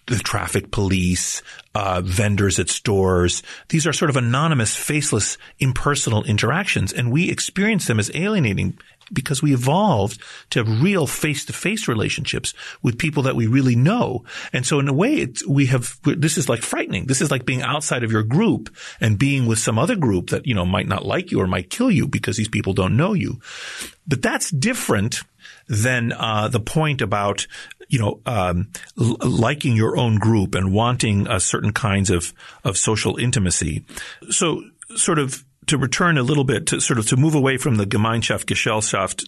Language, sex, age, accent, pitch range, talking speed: English, male, 40-59, American, 100-140 Hz, 185 wpm